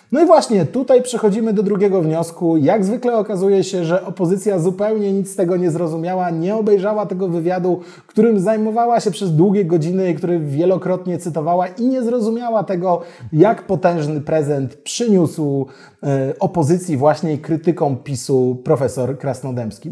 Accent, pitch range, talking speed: native, 170-210 Hz, 145 wpm